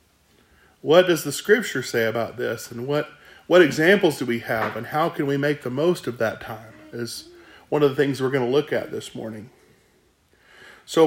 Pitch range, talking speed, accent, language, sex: 125-185 Hz, 200 wpm, American, English, male